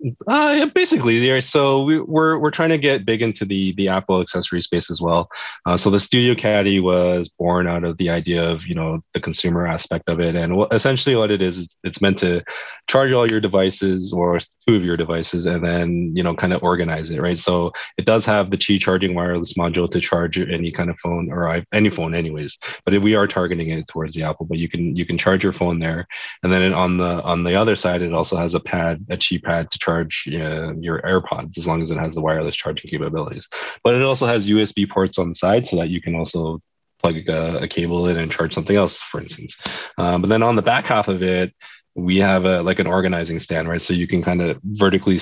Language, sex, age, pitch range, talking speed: English, male, 20-39, 85-100 Hz, 235 wpm